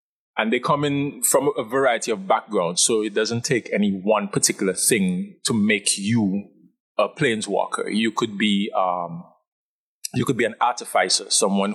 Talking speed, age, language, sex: 165 wpm, 20-39, English, male